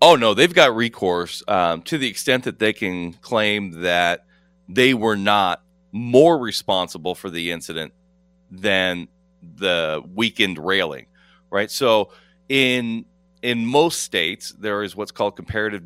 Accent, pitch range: American, 95-140 Hz